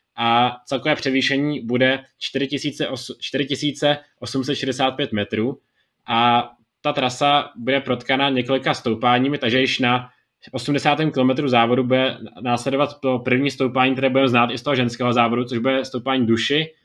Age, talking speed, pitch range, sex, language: 20-39, 130 wpm, 120-135 Hz, male, Czech